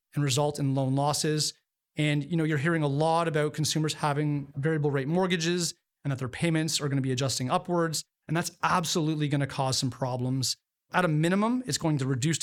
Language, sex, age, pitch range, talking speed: English, male, 30-49, 140-170 Hz, 210 wpm